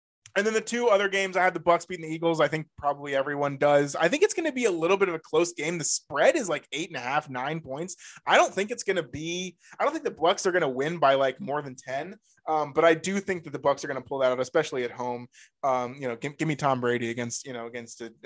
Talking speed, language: 300 wpm, English